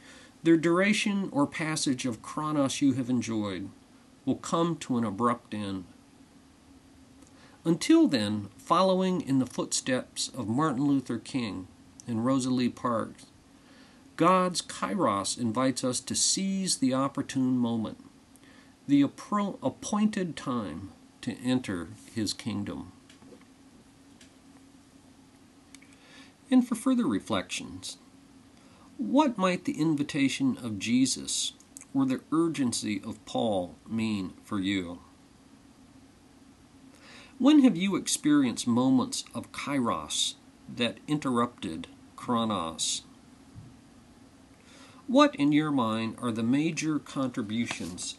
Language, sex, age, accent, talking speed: English, male, 50-69, American, 100 wpm